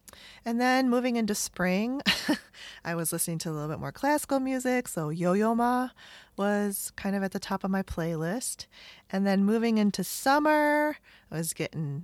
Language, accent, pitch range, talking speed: English, American, 160-215 Hz, 175 wpm